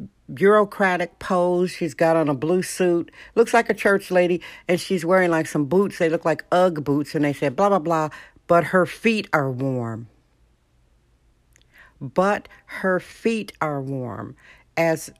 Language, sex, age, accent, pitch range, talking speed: English, female, 60-79, American, 165-200 Hz, 160 wpm